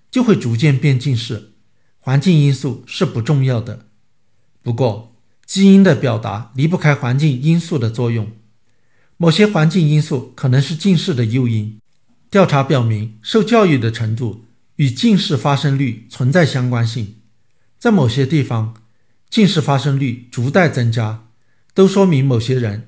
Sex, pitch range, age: male, 115-155 Hz, 50-69